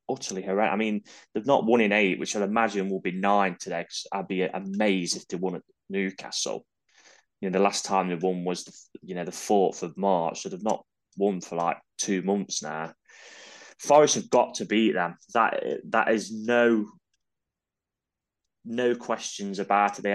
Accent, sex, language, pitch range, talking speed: British, male, English, 90-105 Hz, 190 wpm